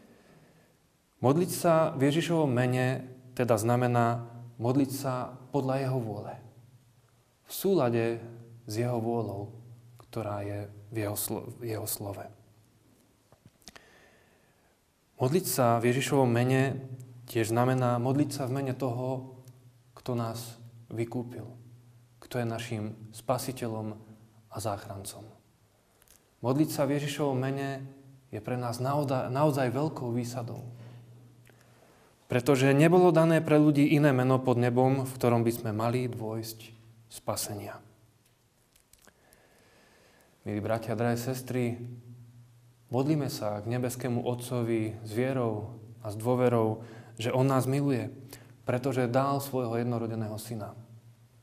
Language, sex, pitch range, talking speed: Slovak, male, 115-130 Hz, 110 wpm